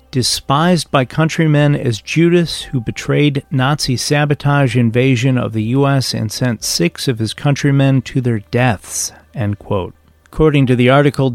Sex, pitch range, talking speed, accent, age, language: male, 120-155 Hz, 150 wpm, American, 40-59, English